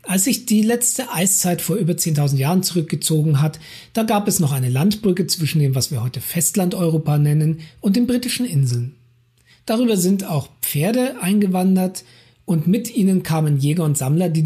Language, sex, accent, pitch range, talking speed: German, male, German, 140-195 Hz, 170 wpm